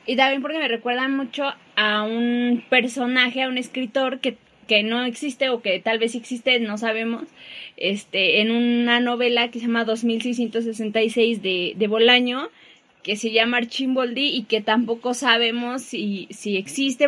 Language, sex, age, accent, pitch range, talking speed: Spanish, female, 20-39, Mexican, 220-255 Hz, 160 wpm